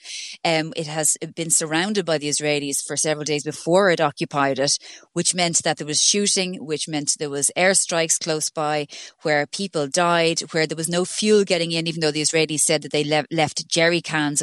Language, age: English, 30-49